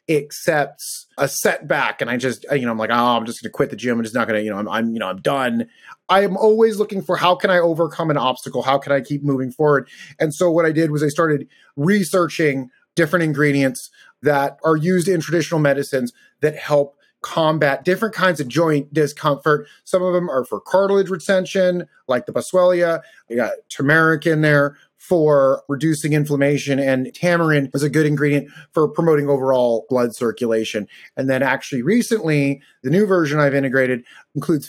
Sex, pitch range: male, 140-175 Hz